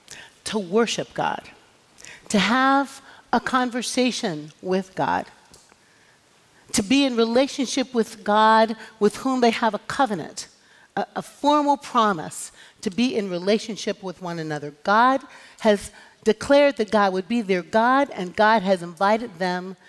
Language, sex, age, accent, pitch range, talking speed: English, female, 50-69, American, 190-250 Hz, 140 wpm